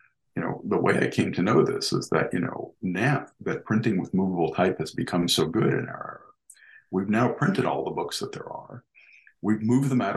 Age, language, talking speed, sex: 50-69, English, 230 wpm, male